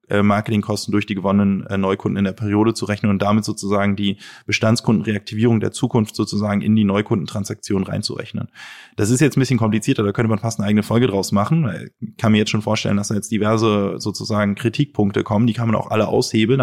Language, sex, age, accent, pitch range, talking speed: German, male, 20-39, German, 100-115 Hz, 200 wpm